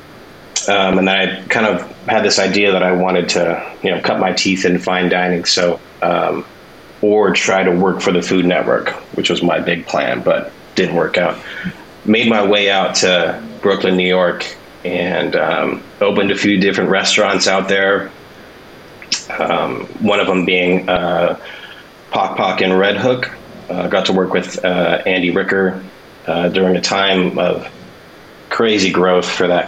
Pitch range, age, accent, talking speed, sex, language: 90-95 Hz, 30-49, American, 175 wpm, male, English